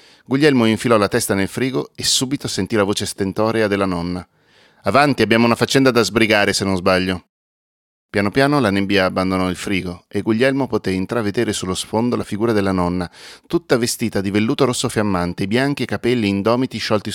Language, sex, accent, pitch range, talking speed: Italian, male, native, 100-120 Hz, 180 wpm